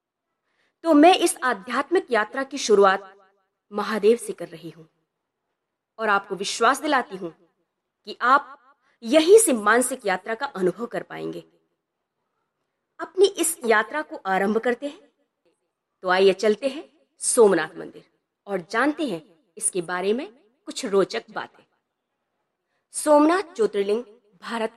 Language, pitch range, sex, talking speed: Hindi, 200-285 Hz, female, 125 wpm